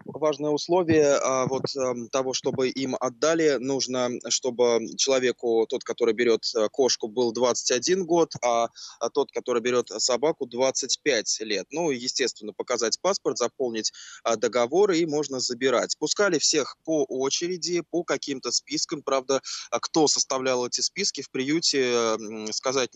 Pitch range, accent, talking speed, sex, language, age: 120-145 Hz, native, 125 wpm, male, Russian, 20-39